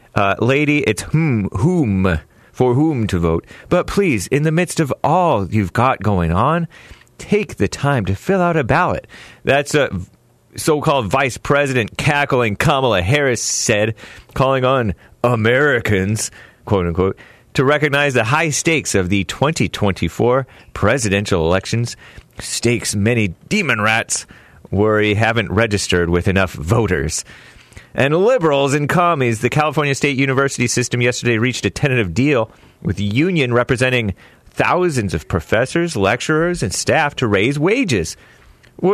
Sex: male